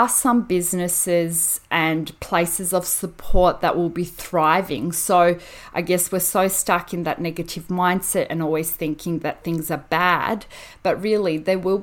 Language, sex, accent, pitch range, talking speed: English, female, Australian, 165-195 Hz, 155 wpm